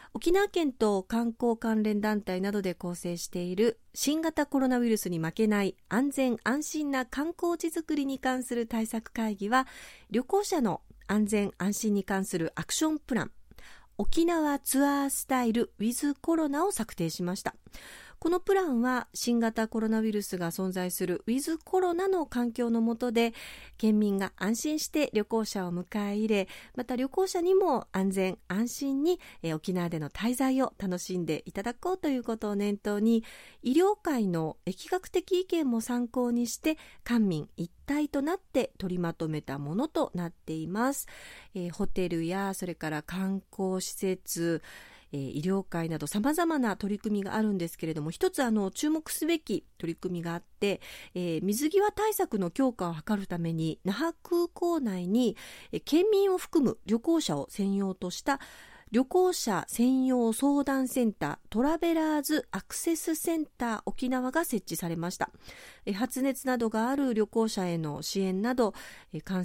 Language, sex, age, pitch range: Japanese, female, 40-59, 185-280 Hz